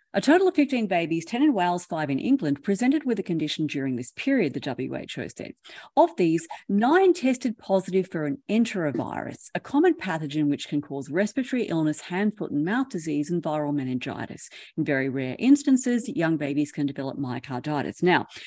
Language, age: English, 40-59